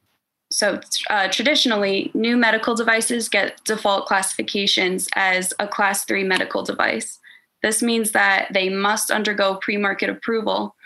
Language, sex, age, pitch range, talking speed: English, female, 20-39, 195-230 Hz, 125 wpm